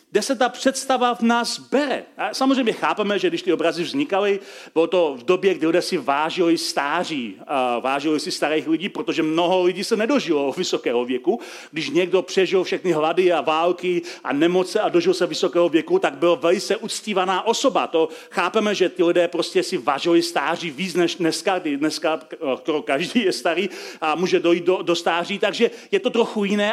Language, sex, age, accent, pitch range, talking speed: Czech, male, 40-59, native, 170-235 Hz, 180 wpm